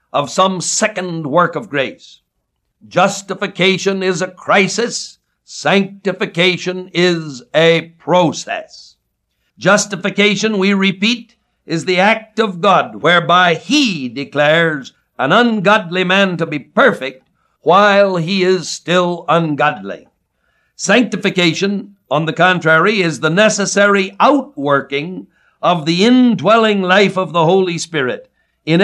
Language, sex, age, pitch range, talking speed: English, male, 60-79, 160-200 Hz, 110 wpm